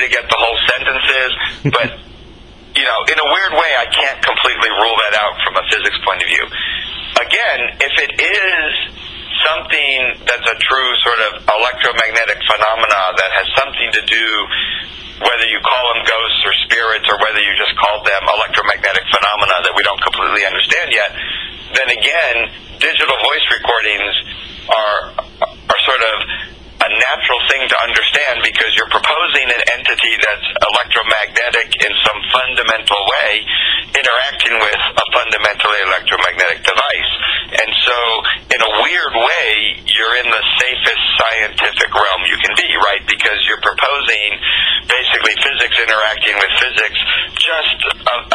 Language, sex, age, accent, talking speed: English, male, 40-59, American, 150 wpm